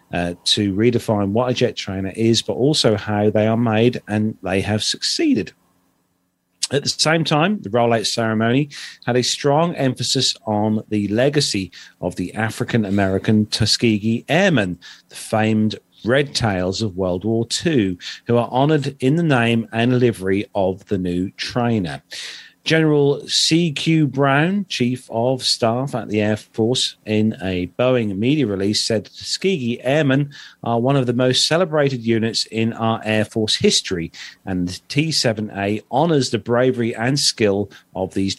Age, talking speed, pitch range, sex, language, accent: 40-59, 155 wpm, 105-130 Hz, male, English, British